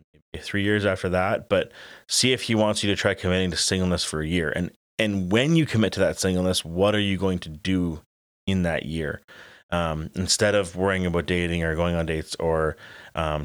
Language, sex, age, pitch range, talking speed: English, male, 30-49, 80-95 Hz, 210 wpm